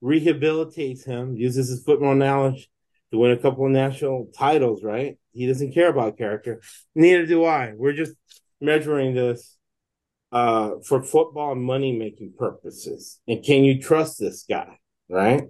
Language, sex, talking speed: English, male, 150 wpm